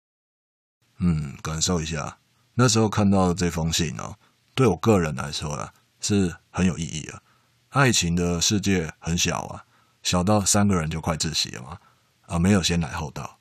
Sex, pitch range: male, 85-110 Hz